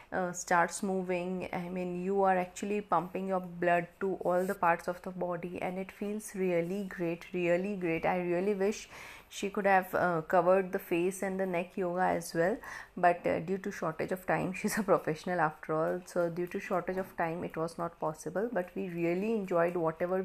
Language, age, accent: Hindi, 30-49, native